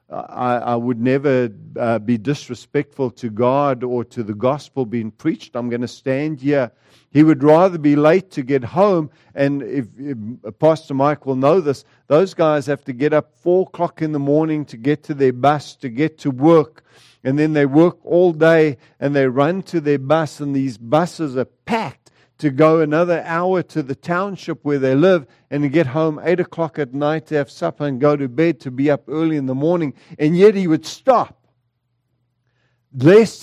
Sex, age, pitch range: male, 50-69, 125-160 Hz